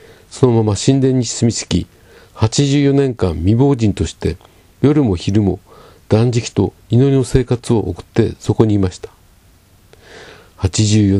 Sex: male